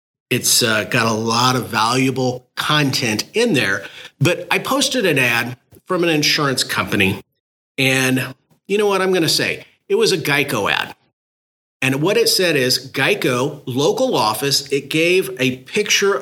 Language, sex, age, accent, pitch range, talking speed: English, male, 40-59, American, 130-165 Hz, 165 wpm